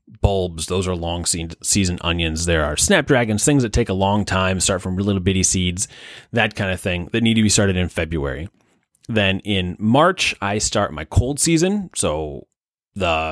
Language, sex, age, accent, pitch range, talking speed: English, male, 30-49, American, 95-115 Hz, 180 wpm